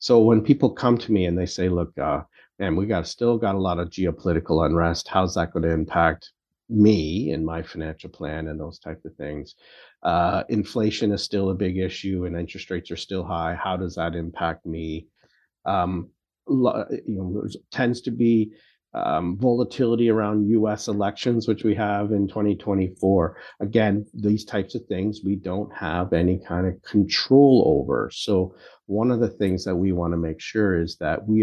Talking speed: 180 wpm